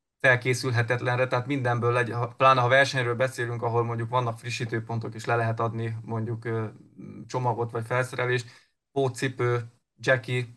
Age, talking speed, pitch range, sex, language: 20-39, 125 wpm, 120-130 Hz, male, Hungarian